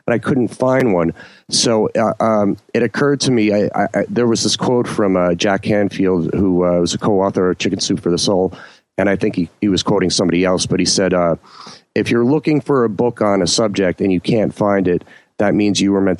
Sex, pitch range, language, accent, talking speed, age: male, 95-115 Hz, English, American, 245 wpm, 40-59